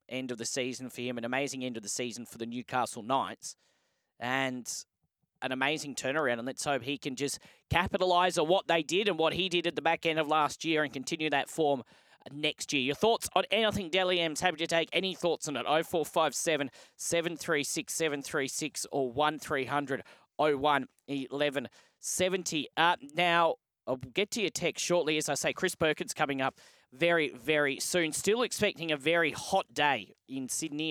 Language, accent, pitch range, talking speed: English, Australian, 140-175 Hz, 180 wpm